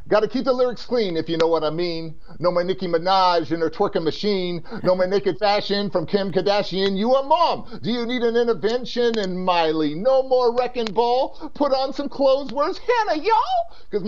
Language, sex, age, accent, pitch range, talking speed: English, male, 40-59, American, 185-235 Hz, 210 wpm